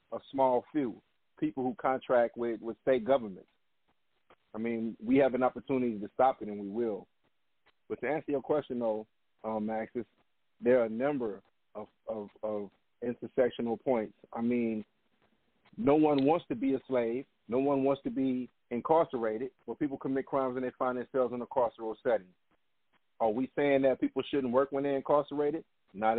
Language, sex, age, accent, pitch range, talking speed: English, male, 40-59, American, 115-140 Hz, 175 wpm